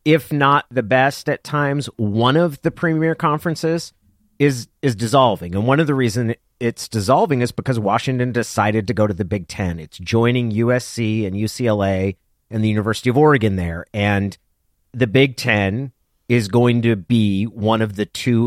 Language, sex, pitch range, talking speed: English, male, 105-140 Hz, 175 wpm